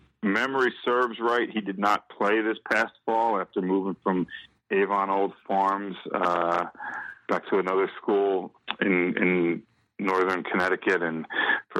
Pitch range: 90-105 Hz